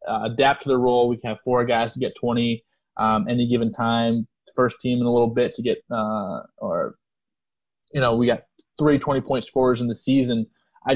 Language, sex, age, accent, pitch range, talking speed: English, male, 20-39, American, 115-150 Hz, 205 wpm